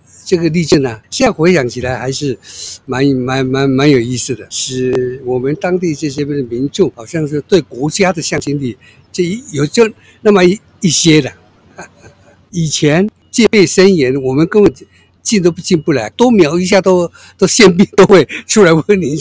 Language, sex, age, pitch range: Chinese, male, 60-79, 130-185 Hz